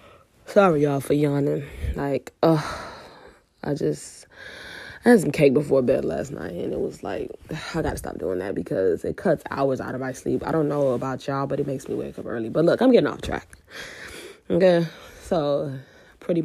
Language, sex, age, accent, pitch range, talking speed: English, female, 20-39, American, 135-170 Hz, 195 wpm